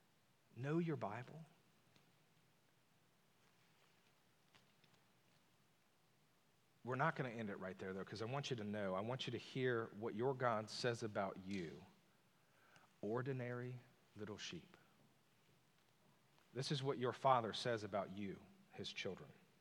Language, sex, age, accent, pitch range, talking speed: English, male, 40-59, American, 125-175 Hz, 130 wpm